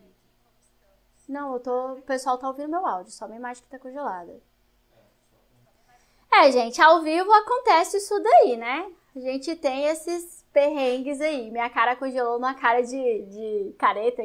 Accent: Brazilian